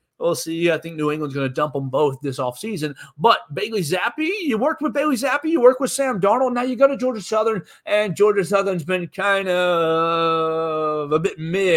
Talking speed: 210 wpm